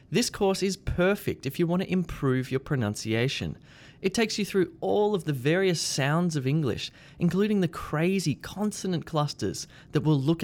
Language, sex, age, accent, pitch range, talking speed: English, male, 20-39, Australian, 135-185 Hz, 170 wpm